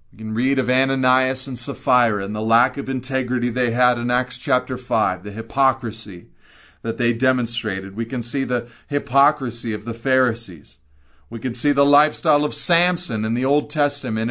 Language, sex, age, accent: English, male, 40-59, American